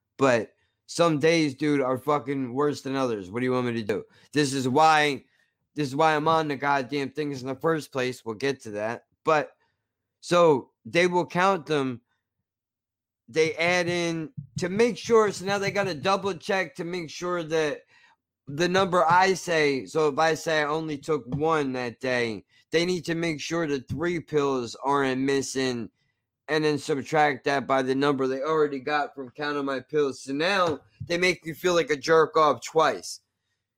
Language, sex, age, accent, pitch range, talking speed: English, male, 20-39, American, 130-160 Hz, 190 wpm